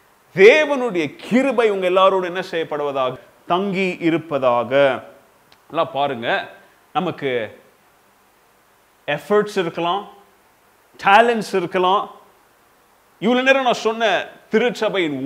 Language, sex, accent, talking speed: Tamil, male, native, 80 wpm